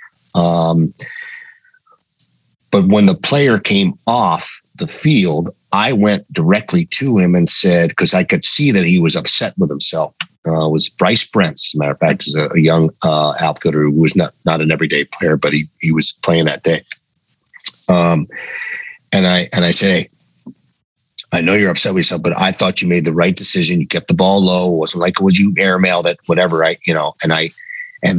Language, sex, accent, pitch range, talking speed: English, male, American, 80-110 Hz, 205 wpm